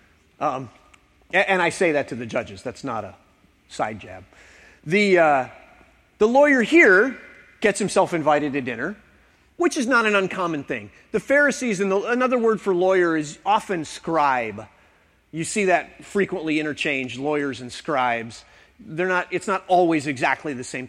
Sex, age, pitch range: male, 30-49, 125-200 Hz